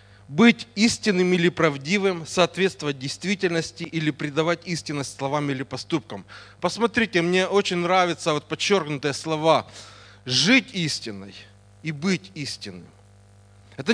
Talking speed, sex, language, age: 105 wpm, male, Russian, 30-49